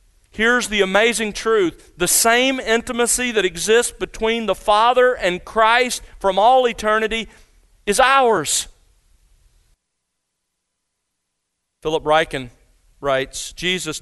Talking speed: 100 wpm